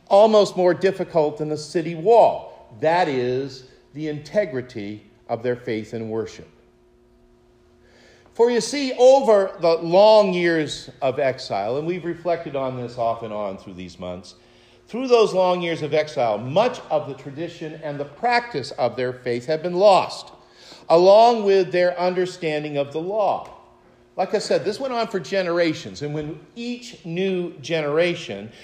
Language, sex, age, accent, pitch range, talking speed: English, male, 50-69, American, 120-180 Hz, 155 wpm